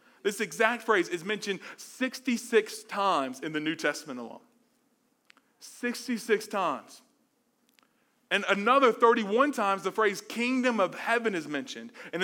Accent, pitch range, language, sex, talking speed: American, 175-240 Hz, English, male, 125 wpm